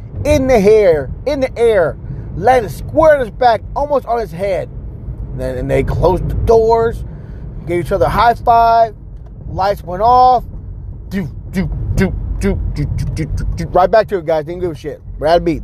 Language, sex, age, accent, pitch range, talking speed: English, male, 30-49, American, 140-220 Hz, 190 wpm